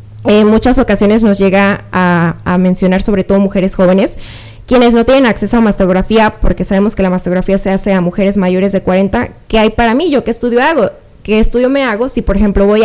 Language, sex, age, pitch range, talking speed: Spanish, female, 10-29, 195-235 Hz, 220 wpm